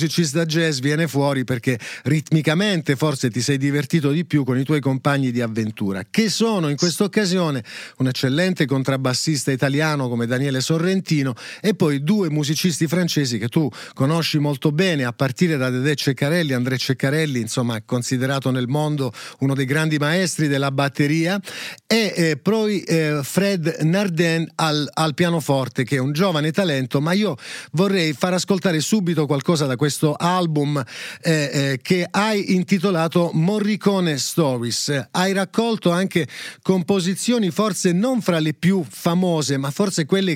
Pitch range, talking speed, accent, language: 140-185 Hz, 145 wpm, native, Italian